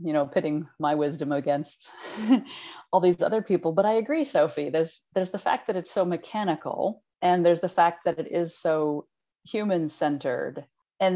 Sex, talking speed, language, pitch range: female, 170 wpm, English, 150-195 Hz